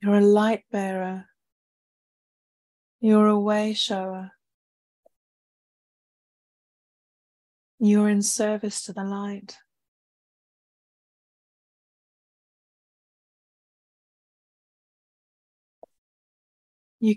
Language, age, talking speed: English, 40-59, 50 wpm